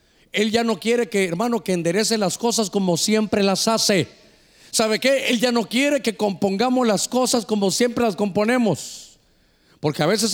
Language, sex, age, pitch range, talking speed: Spanish, male, 50-69, 190-260 Hz, 180 wpm